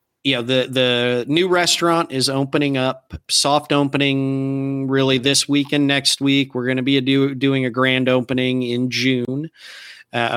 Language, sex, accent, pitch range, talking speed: English, male, American, 115-135 Hz, 170 wpm